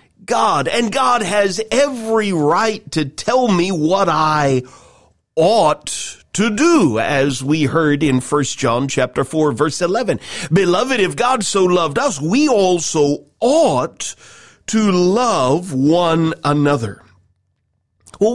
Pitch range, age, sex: 130-190 Hz, 40-59, male